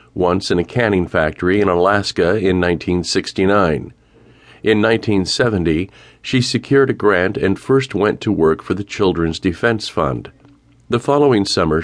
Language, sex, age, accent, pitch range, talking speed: English, male, 50-69, American, 90-110 Hz, 140 wpm